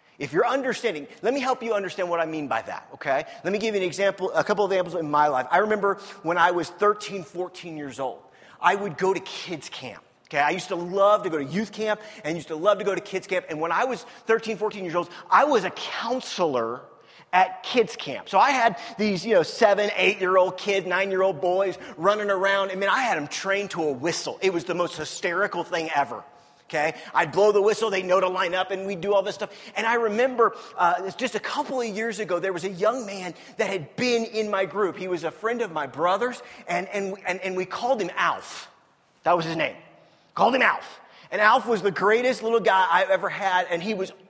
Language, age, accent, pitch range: English, 30-49, American, 175-220 Hz